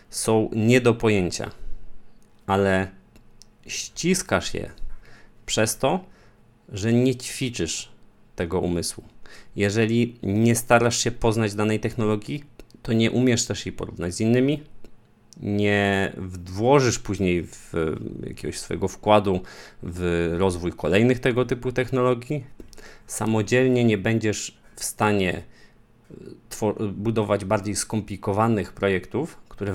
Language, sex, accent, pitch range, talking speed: Polish, male, native, 100-120 Hz, 105 wpm